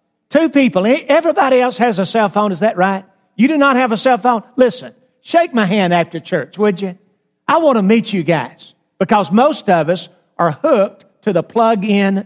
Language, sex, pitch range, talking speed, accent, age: English, male, 165-225 Hz, 200 wpm, American, 50-69